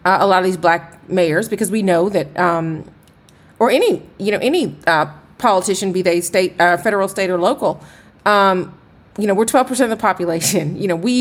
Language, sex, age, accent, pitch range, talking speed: English, female, 30-49, American, 175-215 Hz, 210 wpm